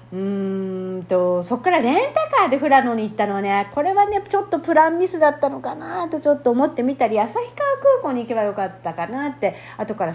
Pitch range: 175-275 Hz